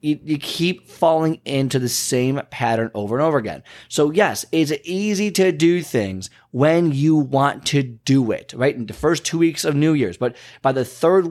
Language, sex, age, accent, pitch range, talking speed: English, male, 20-39, American, 130-165 Hz, 195 wpm